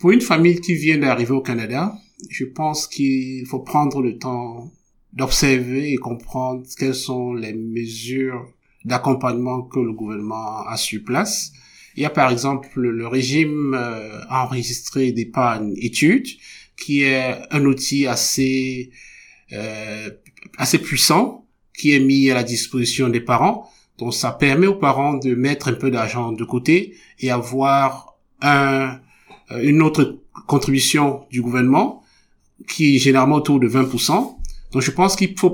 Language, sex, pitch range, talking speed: French, male, 125-150 Hz, 145 wpm